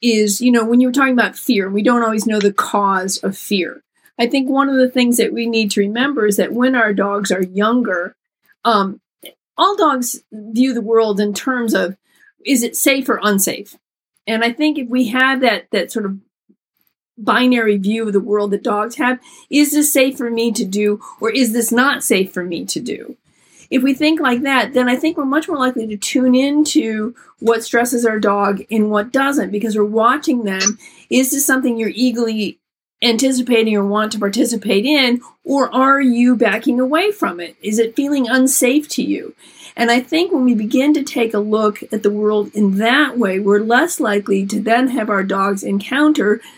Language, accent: English, American